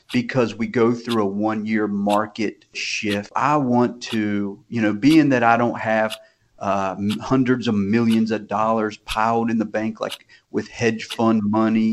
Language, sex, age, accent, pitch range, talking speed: English, male, 40-59, American, 110-130 Hz, 170 wpm